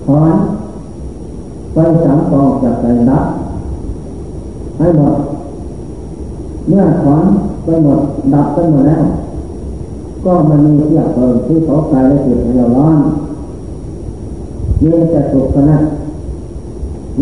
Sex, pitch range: male, 130-165 Hz